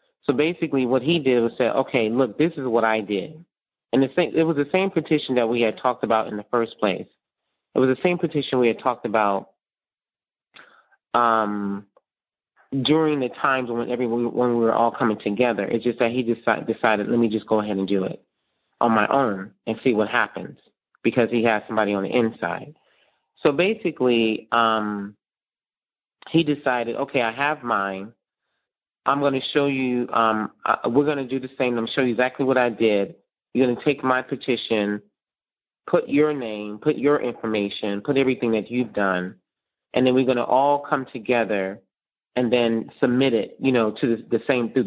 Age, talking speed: 30-49, 195 wpm